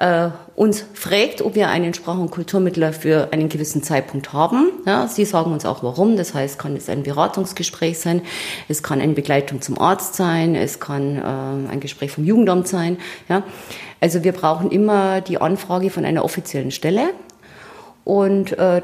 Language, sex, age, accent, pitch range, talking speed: German, female, 30-49, German, 155-200 Hz, 165 wpm